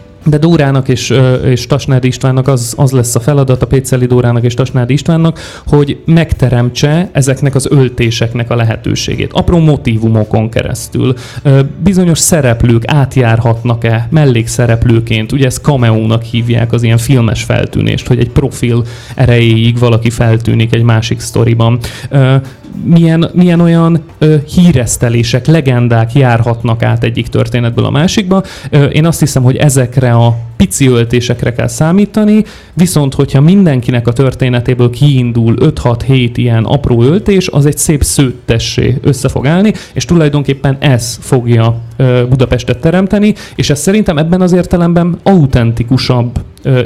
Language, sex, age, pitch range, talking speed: Hungarian, male, 30-49, 120-150 Hz, 130 wpm